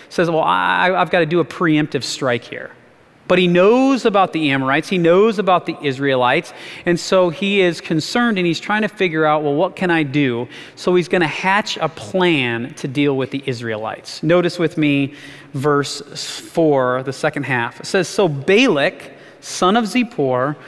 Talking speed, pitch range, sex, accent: 185 wpm, 150-220 Hz, male, American